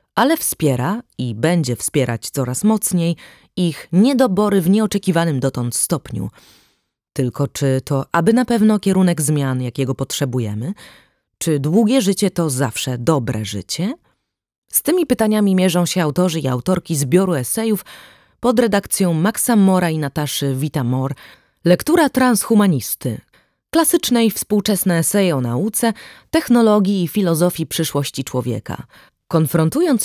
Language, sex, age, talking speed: Polish, female, 20-39, 120 wpm